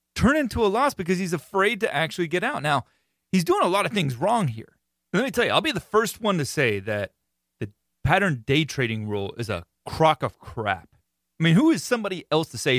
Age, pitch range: 30-49, 120-180 Hz